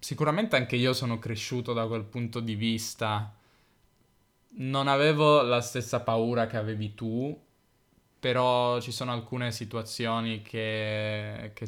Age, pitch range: 10-29, 110-125 Hz